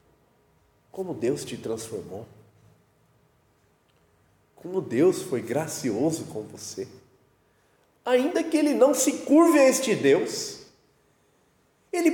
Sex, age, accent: male, 40-59, Brazilian